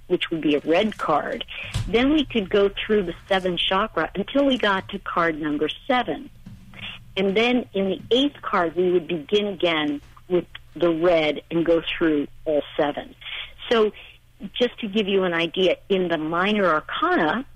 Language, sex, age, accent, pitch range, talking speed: English, female, 50-69, American, 165-210 Hz, 170 wpm